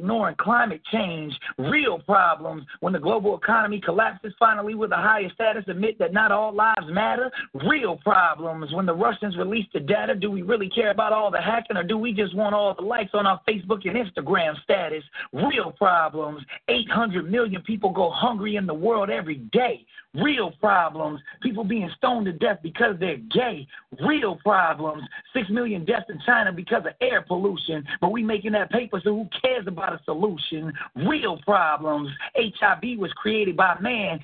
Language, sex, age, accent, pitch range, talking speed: English, male, 40-59, American, 180-225 Hz, 180 wpm